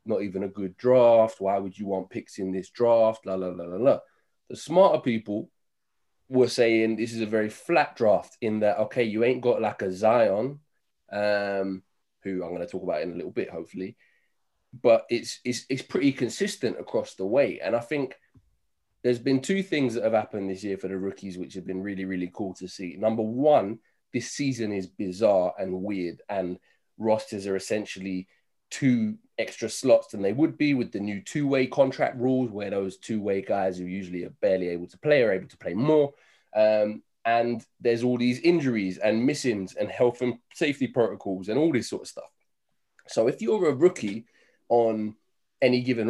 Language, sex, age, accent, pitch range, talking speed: English, male, 20-39, British, 95-130 Hz, 195 wpm